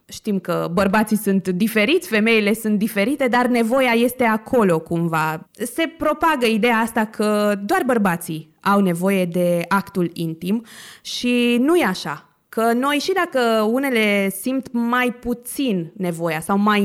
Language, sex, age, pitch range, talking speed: Romanian, female, 20-39, 195-265 Hz, 140 wpm